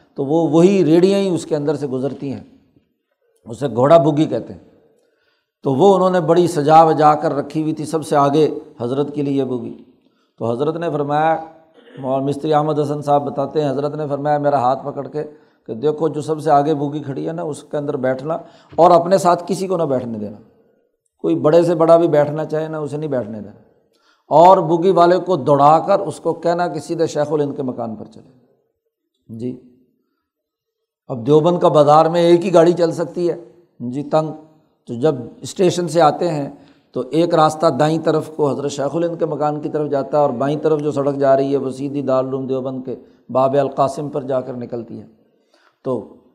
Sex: male